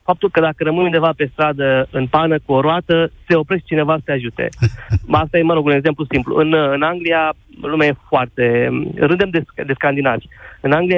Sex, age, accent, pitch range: male, 30-49, native, 135-165 Hz